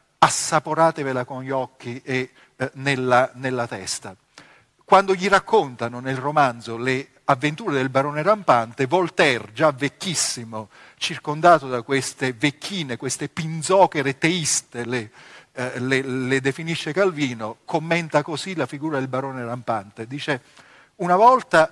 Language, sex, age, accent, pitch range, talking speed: Italian, male, 40-59, native, 130-165 Hz, 125 wpm